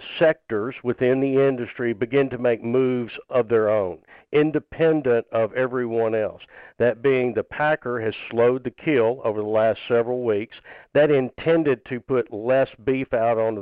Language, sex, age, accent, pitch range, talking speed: English, male, 50-69, American, 115-140 Hz, 160 wpm